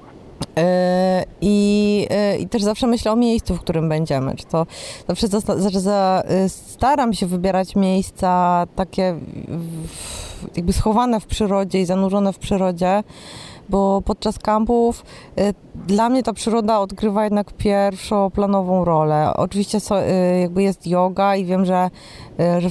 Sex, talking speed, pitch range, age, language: female, 135 wpm, 175-205 Hz, 20-39, Polish